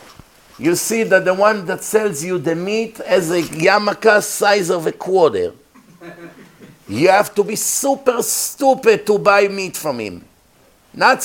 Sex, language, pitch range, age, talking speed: male, English, 145-210 Hz, 50-69, 155 wpm